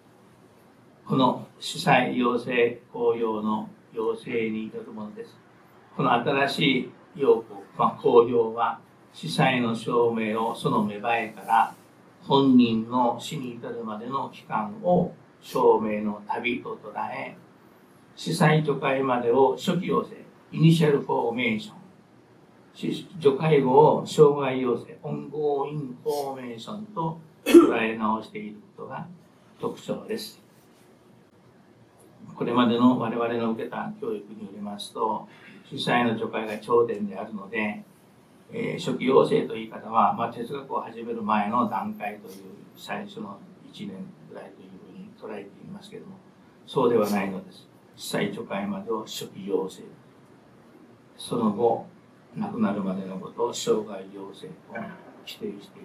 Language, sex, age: Japanese, male, 60-79